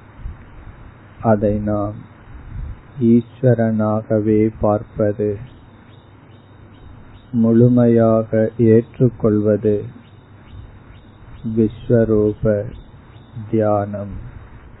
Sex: male